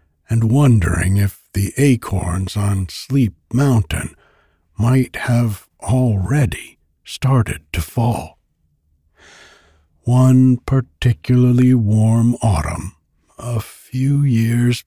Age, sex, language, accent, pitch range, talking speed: 60-79, male, English, American, 80-125 Hz, 85 wpm